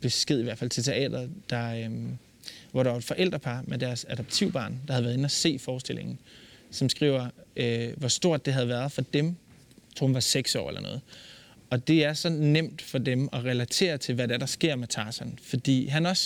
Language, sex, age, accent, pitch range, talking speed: Danish, male, 20-39, native, 125-150 Hz, 220 wpm